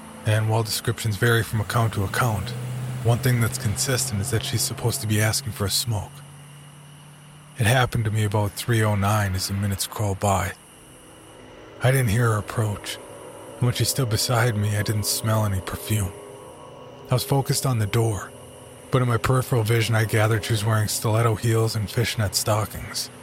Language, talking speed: English, 180 wpm